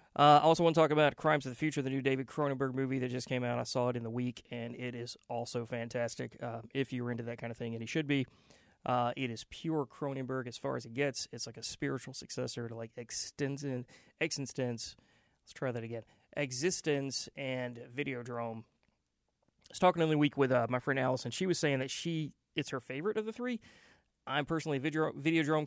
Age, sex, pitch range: 30-49, male, 115-140 Hz